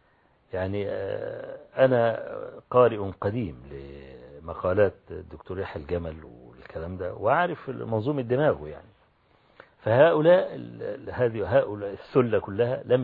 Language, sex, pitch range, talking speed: Arabic, male, 85-125 Hz, 90 wpm